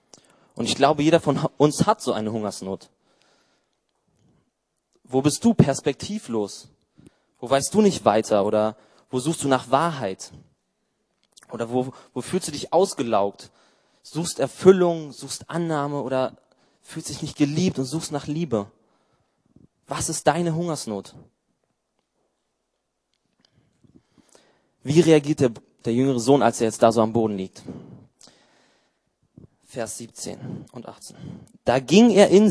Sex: male